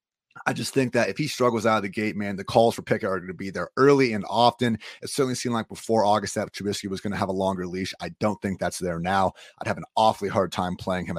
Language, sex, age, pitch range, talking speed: English, male, 30-49, 95-120 Hz, 285 wpm